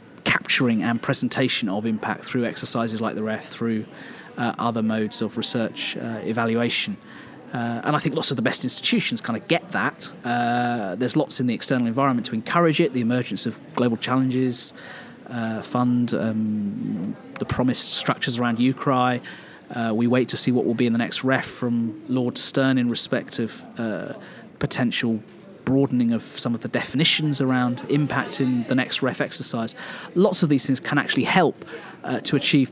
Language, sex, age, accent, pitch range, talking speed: English, male, 30-49, British, 120-140 Hz, 175 wpm